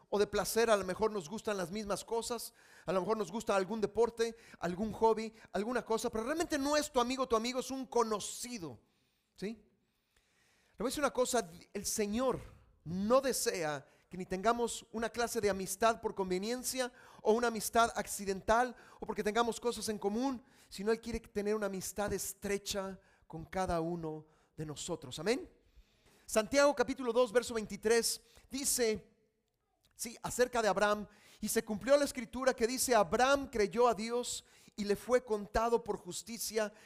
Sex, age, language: male, 40-59, Spanish